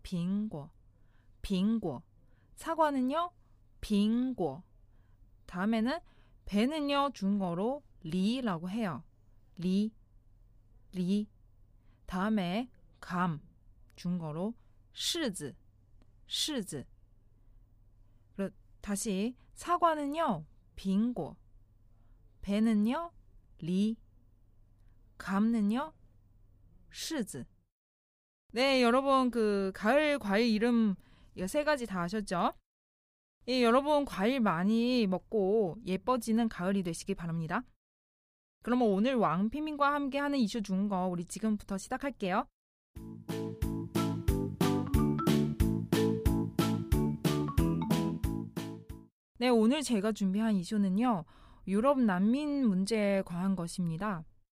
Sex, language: female, Korean